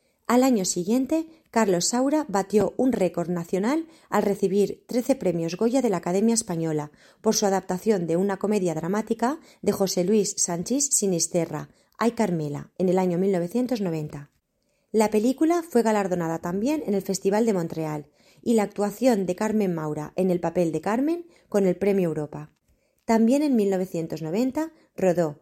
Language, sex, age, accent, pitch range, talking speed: Spanish, female, 20-39, Spanish, 170-225 Hz, 150 wpm